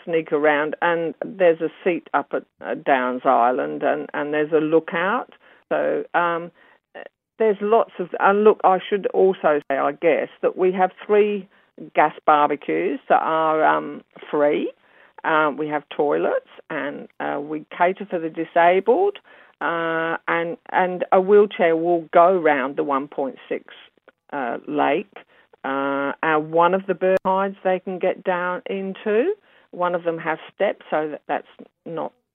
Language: English